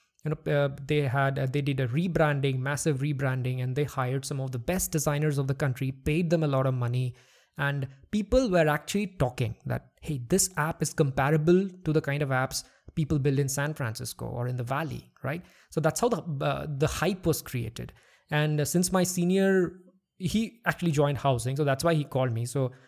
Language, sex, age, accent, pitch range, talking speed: English, male, 20-39, Indian, 130-175 Hz, 210 wpm